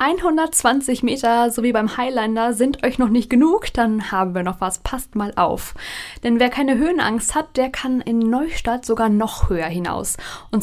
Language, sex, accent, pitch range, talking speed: German, female, German, 205-255 Hz, 185 wpm